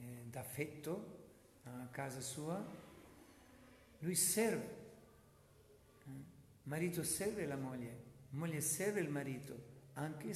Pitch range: 105-140 Hz